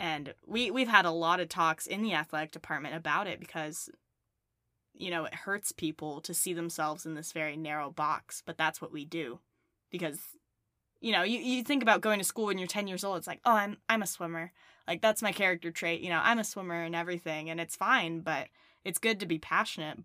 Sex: female